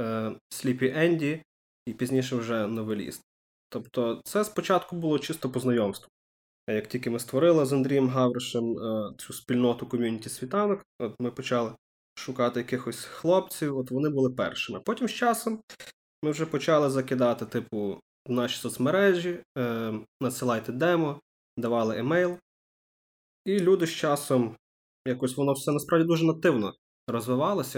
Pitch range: 120-155 Hz